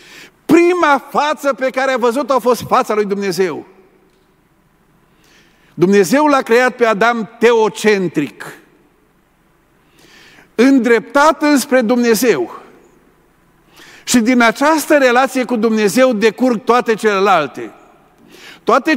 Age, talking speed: 50-69, 95 wpm